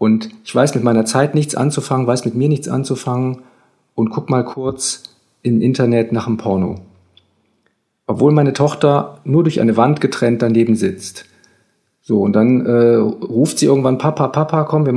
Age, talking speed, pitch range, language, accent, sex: 40-59, 170 wpm, 115-140 Hz, German, German, male